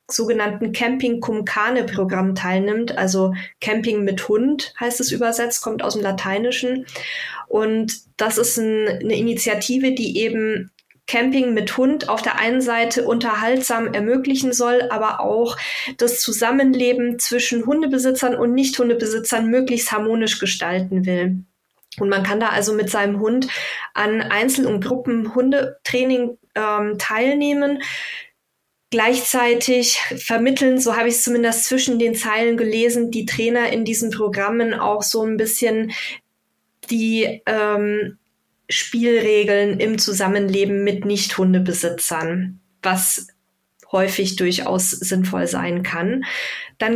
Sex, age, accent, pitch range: female, 20-39, German, 205-245 Hz